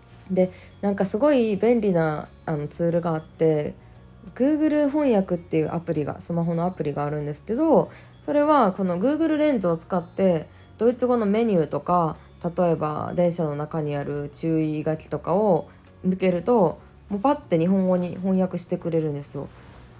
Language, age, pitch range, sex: Japanese, 20-39, 155-215 Hz, female